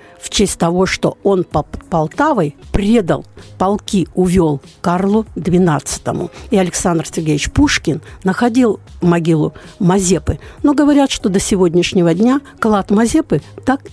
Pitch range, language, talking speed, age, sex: 170-235 Hz, Russian, 120 wpm, 60-79, female